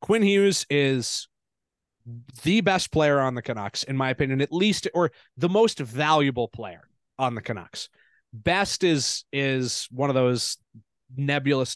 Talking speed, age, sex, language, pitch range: 150 wpm, 30-49, male, English, 120-150 Hz